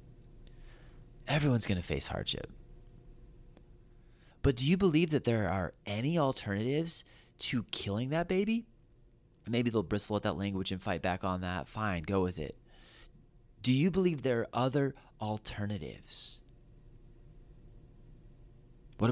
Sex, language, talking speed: male, English, 130 wpm